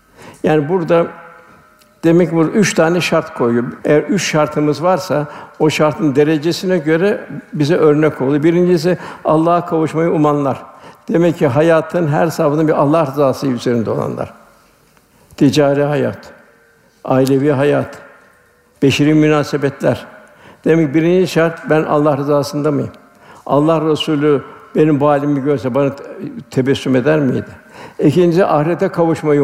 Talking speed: 120 wpm